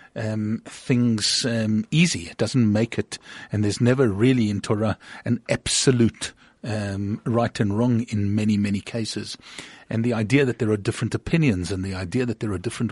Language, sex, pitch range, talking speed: English, male, 110-130 Hz, 180 wpm